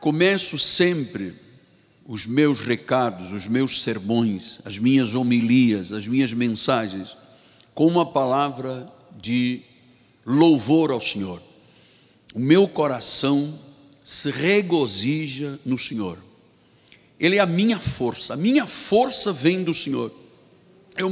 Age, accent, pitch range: 60-79, Brazilian, 115-160 Hz